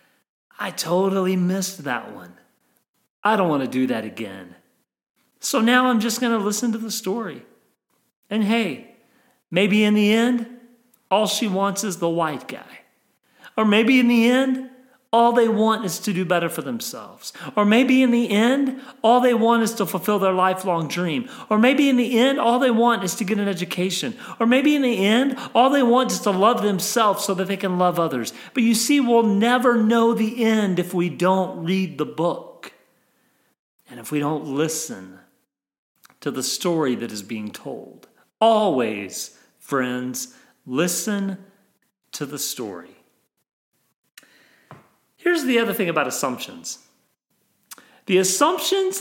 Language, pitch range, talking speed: English, 175-240 Hz, 165 wpm